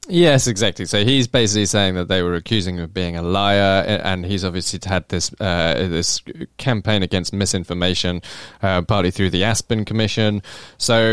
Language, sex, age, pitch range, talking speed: English, male, 20-39, 90-110 Hz, 175 wpm